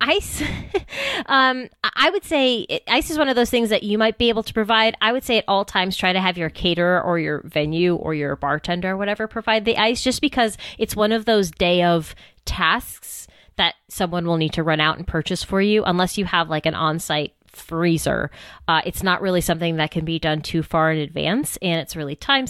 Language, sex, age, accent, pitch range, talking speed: English, female, 20-39, American, 165-220 Hz, 225 wpm